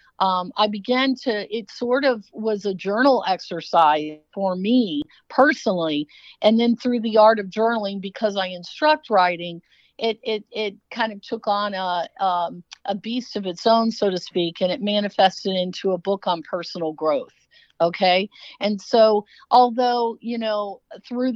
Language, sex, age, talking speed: English, female, 50-69, 165 wpm